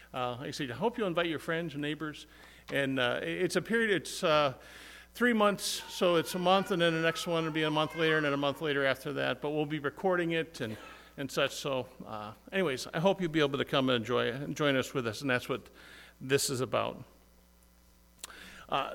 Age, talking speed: 50-69, 230 wpm